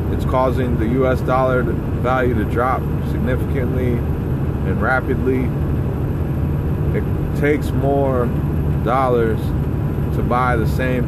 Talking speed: 105 wpm